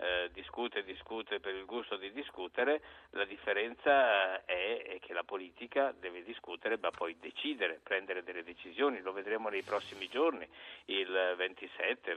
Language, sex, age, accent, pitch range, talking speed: Italian, male, 50-69, native, 90-120 Hz, 150 wpm